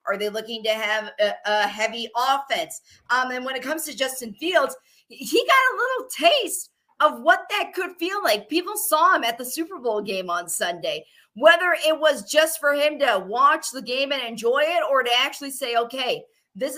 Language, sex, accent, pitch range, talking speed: English, female, American, 220-305 Hz, 205 wpm